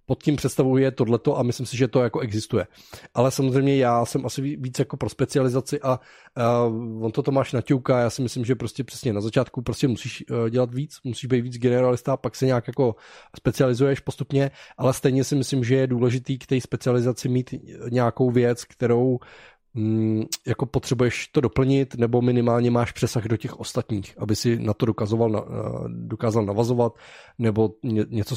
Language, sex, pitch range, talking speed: Czech, male, 115-140 Hz, 175 wpm